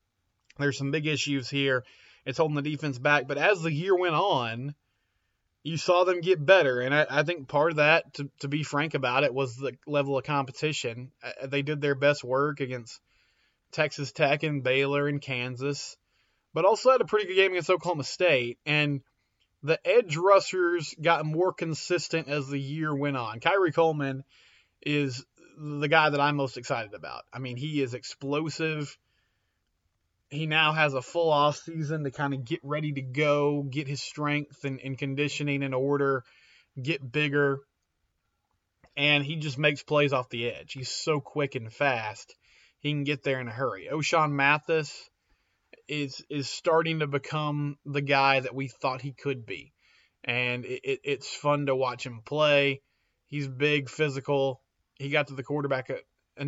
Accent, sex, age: American, male, 20-39